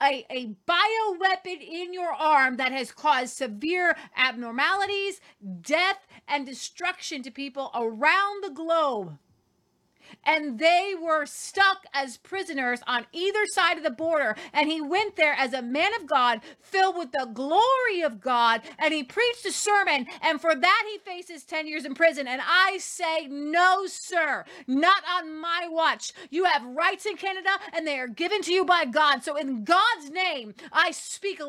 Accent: American